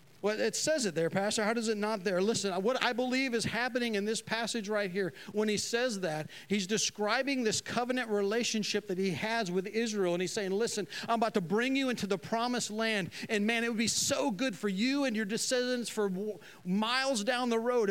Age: 40-59